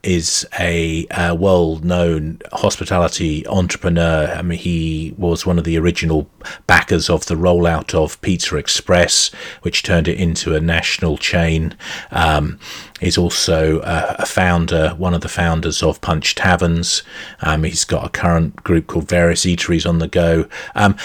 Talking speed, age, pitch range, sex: 155 wpm, 40-59, 85-105 Hz, male